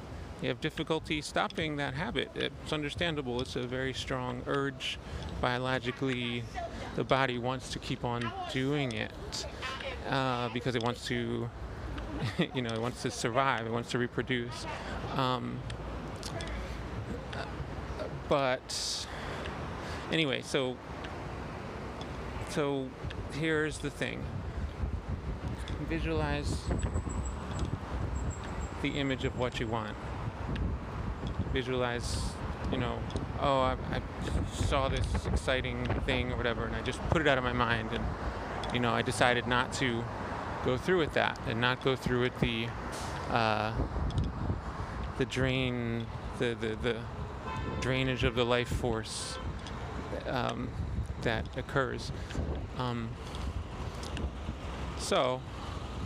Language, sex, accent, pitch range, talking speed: English, male, American, 90-130 Hz, 115 wpm